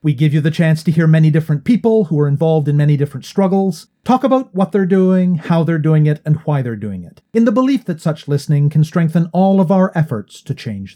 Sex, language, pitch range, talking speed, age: male, English, 135-180 Hz, 245 wpm, 40-59